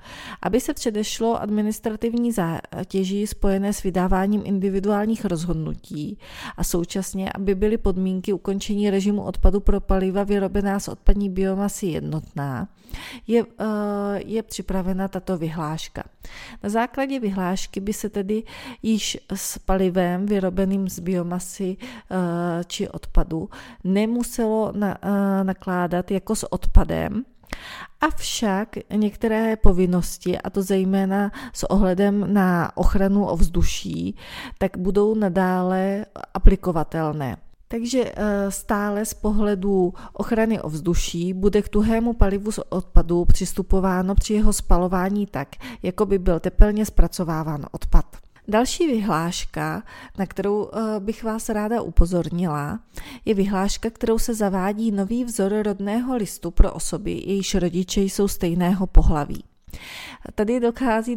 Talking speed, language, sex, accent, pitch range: 110 wpm, Czech, female, native, 185-215 Hz